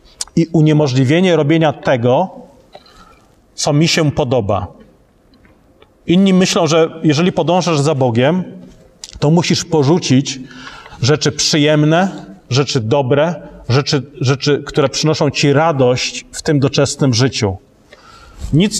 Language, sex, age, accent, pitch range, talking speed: Polish, male, 40-59, native, 130-170 Hz, 105 wpm